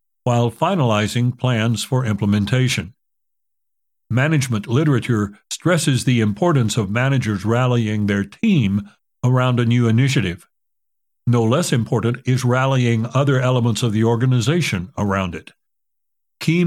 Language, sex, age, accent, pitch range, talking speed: English, male, 60-79, American, 110-140 Hz, 115 wpm